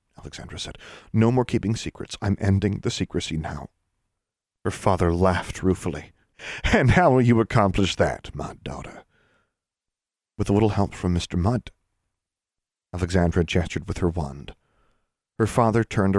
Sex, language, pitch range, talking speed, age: male, English, 90-115 Hz, 140 wpm, 40-59